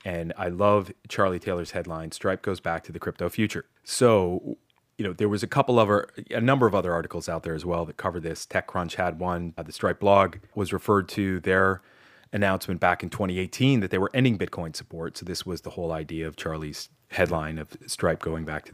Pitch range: 85-105 Hz